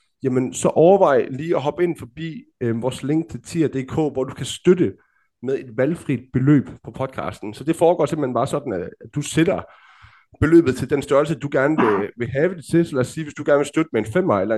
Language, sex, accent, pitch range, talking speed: Danish, male, native, 120-155 Hz, 225 wpm